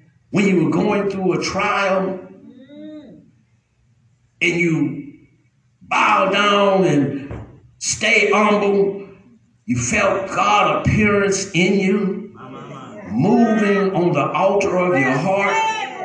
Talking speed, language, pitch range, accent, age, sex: 100 wpm, English, 180-270 Hz, American, 50-69, male